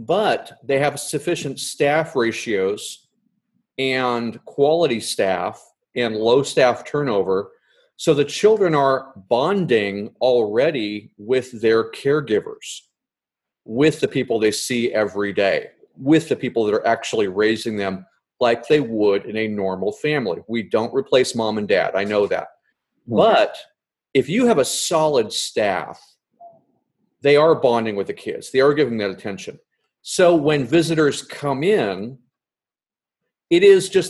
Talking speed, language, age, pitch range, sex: 140 wpm, English, 40-59, 115-160 Hz, male